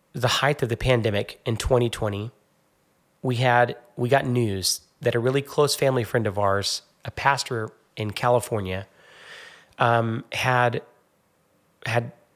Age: 30-49